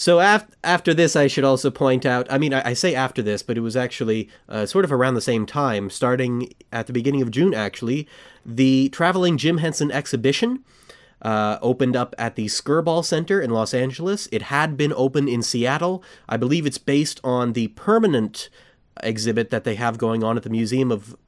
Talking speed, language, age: 200 wpm, English, 30-49